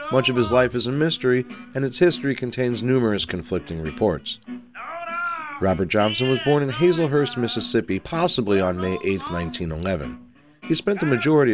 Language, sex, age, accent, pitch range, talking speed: English, male, 40-59, American, 95-135 Hz, 155 wpm